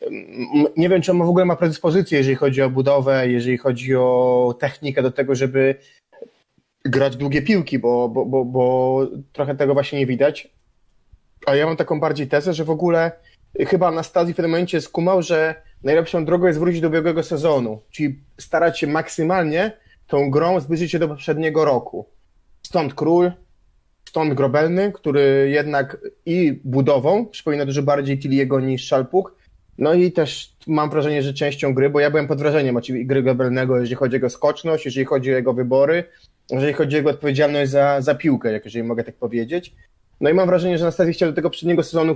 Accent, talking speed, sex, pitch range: native, 185 wpm, male, 135-165 Hz